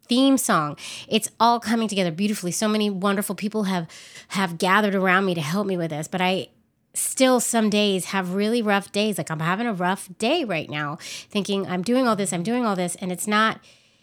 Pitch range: 170-210 Hz